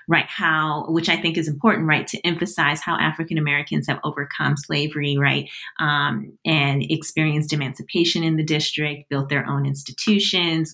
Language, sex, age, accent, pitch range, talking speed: English, female, 30-49, American, 145-170 Hz, 150 wpm